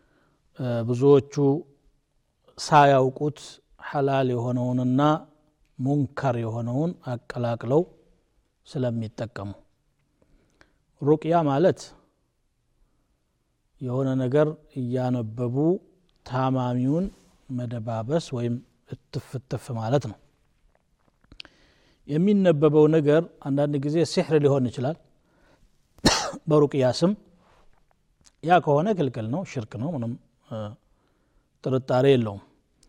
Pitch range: 125-150 Hz